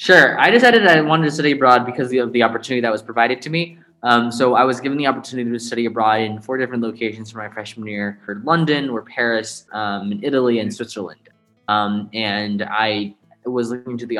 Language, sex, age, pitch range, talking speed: English, male, 20-39, 110-130 Hz, 215 wpm